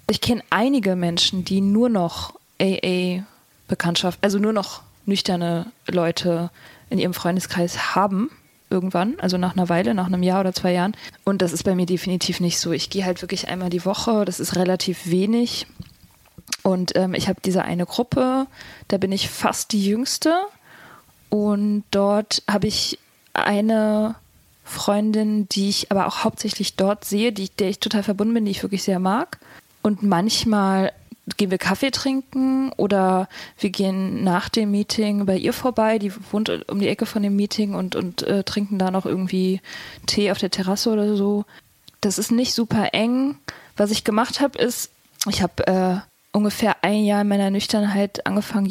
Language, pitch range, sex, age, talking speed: German, 185-215 Hz, female, 20-39, 170 wpm